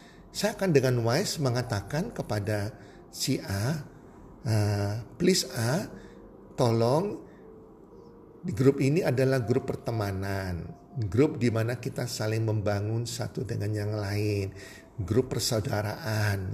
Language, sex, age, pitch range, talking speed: Indonesian, male, 50-69, 105-135 Hz, 110 wpm